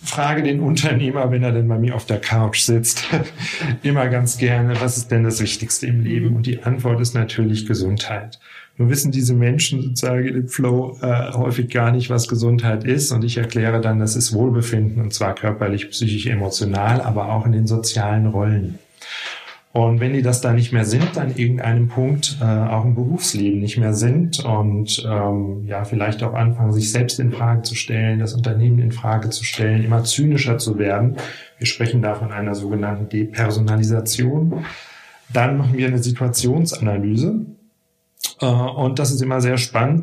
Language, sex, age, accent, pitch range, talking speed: German, male, 40-59, German, 110-125 Hz, 180 wpm